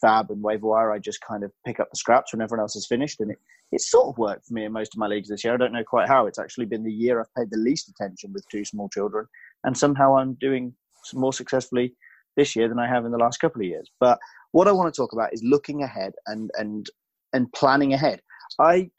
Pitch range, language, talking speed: 115-145 Hz, English, 265 wpm